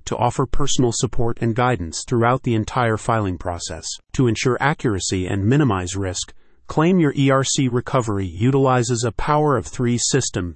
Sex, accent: male, American